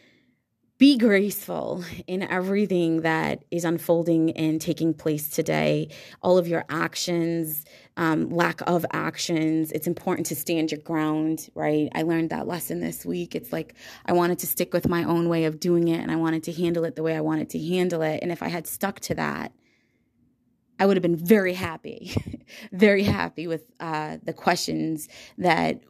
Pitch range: 155-180 Hz